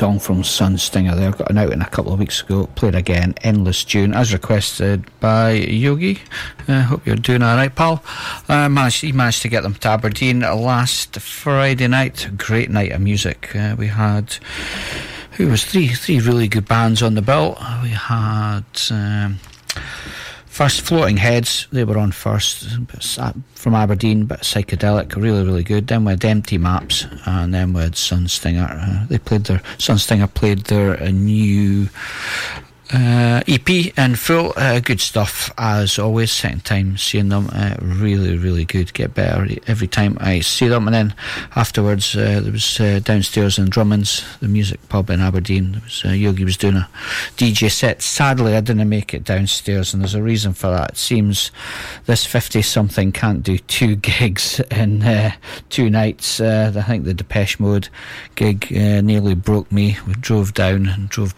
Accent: British